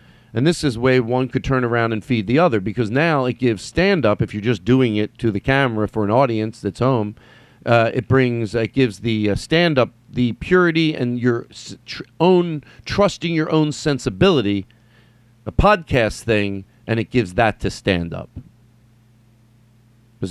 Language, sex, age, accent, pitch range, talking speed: English, male, 40-59, American, 115-150 Hz, 175 wpm